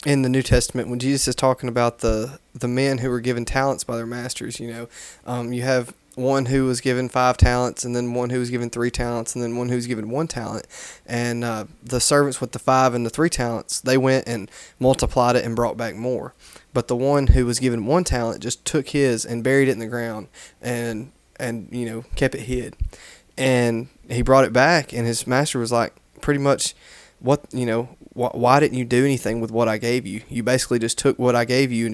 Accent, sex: American, male